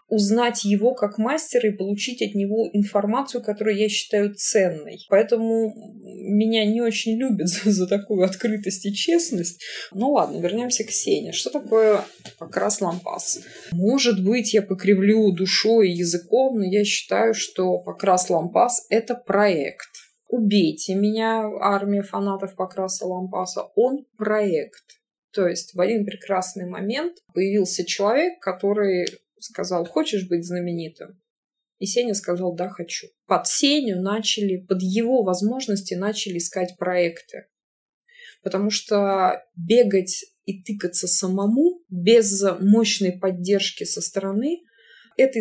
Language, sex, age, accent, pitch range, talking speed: Russian, female, 20-39, native, 185-225 Hz, 125 wpm